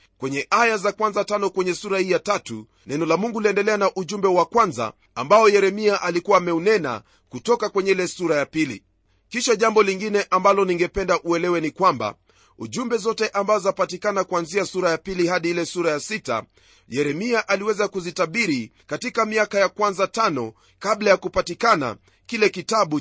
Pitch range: 175-225 Hz